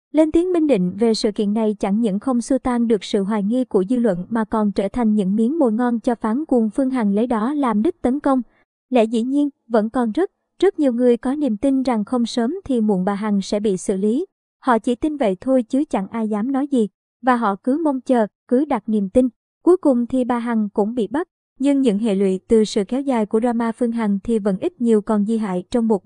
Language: Vietnamese